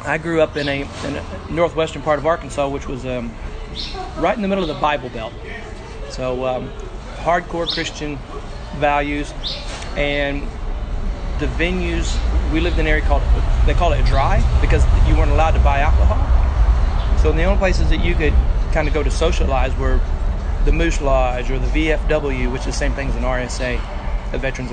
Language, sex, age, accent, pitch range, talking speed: English, male, 30-49, American, 110-155 Hz, 185 wpm